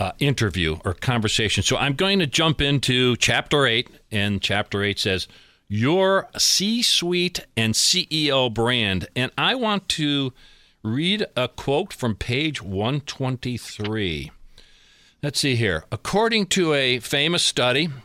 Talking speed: 130 wpm